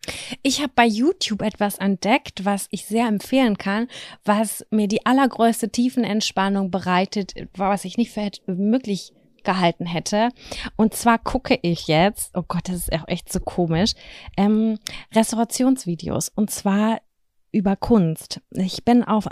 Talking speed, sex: 145 wpm, female